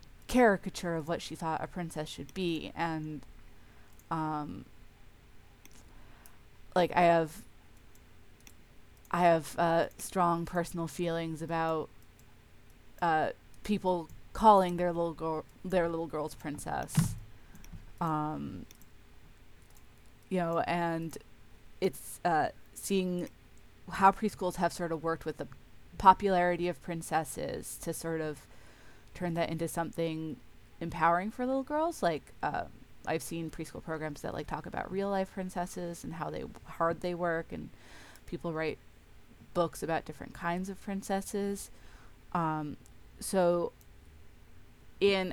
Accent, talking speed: American, 120 wpm